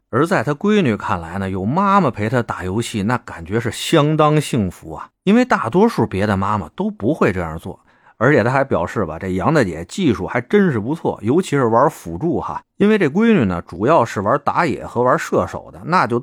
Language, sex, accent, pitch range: Chinese, male, native, 95-160 Hz